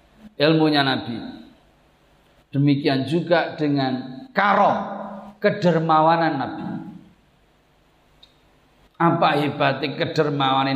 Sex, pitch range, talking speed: male, 150-225 Hz, 60 wpm